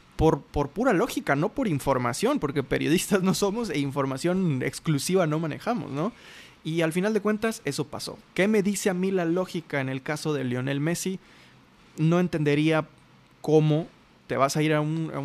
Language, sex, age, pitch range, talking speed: Spanish, male, 20-39, 145-175 Hz, 180 wpm